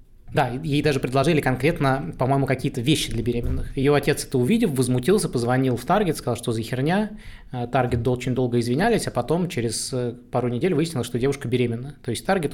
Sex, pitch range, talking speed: male, 125-150 Hz, 180 wpm